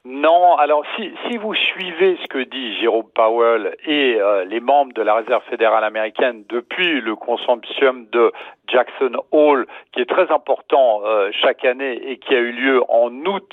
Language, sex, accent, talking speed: French, male, French, 175 wpm